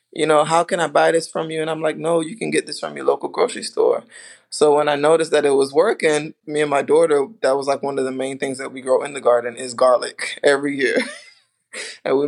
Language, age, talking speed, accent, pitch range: English, 20-39, 265 wpm, American, 135-185 Hz